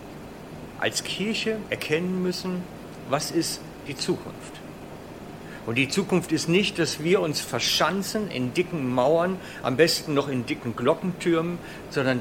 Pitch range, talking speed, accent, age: 125-180 Hz, 135 wpm, German, 60-79